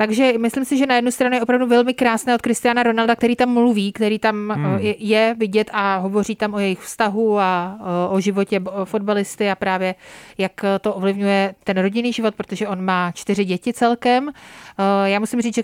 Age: 30-49